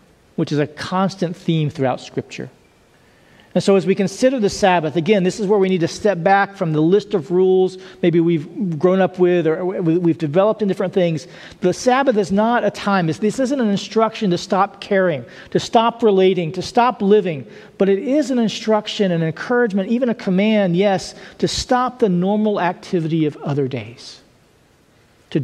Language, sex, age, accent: English, male, 40-59, American